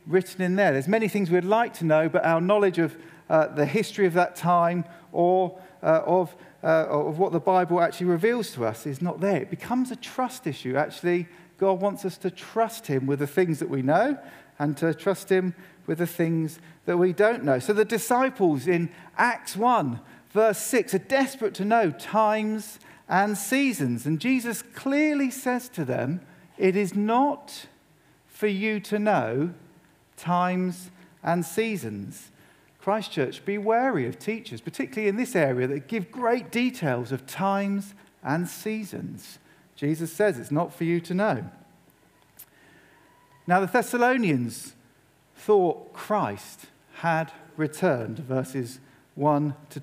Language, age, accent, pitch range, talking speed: English, 50-69, British, 160-210 Hz, 160 wpm